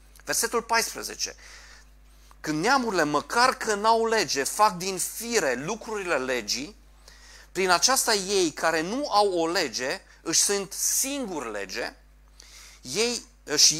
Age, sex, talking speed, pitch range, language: 30-49, male, 115 wpm, 150-220 Hz, Romanian